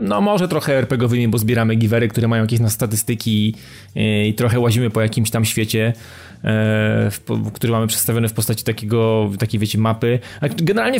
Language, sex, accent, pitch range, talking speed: Polish, male, native, 115-155 Hz, 185 wpm